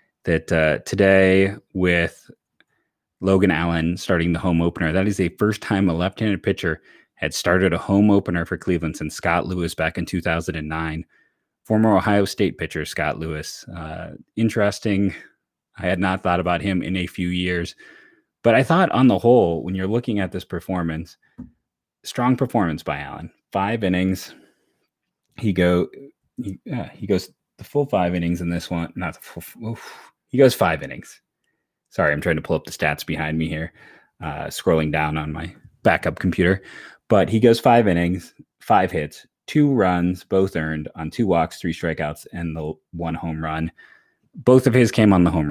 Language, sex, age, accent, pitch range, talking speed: English, male, 30-49, American, 85-100 Hz, 175 wpm